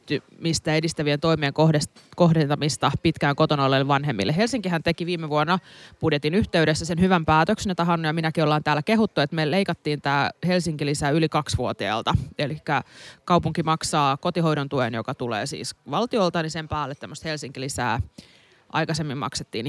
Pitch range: 140-175 Hz